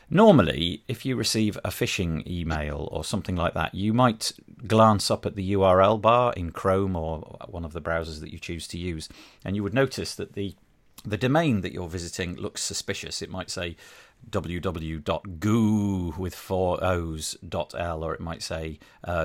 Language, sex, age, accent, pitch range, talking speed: English, male, 40-59, British, 85-110 Hz, 180 wpm